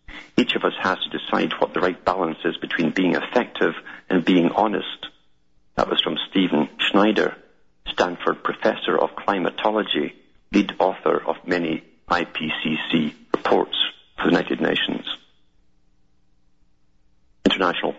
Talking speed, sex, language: 125 wpm, male, English